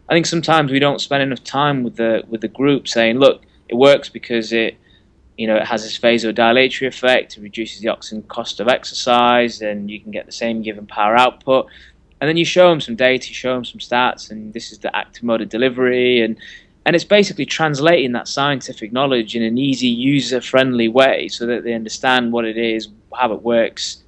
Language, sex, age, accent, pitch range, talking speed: English, male, 20-39, British, 110-130 Hz, 215 wpm